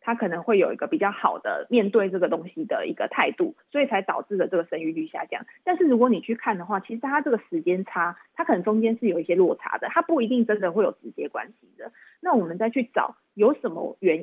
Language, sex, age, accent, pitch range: Chinese, female, 20-39, native, 195-275 Hz